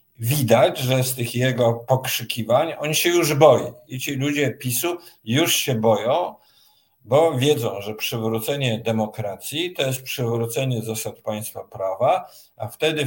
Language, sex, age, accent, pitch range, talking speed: Polish, male, 50-69, native, 115-145 Hz, 140 wpm